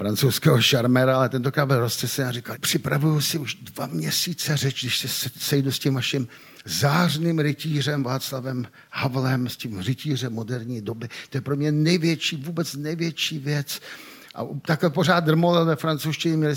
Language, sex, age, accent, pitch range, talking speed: Czech, male, 50-69, native, 120-150 Hz, 155 wpm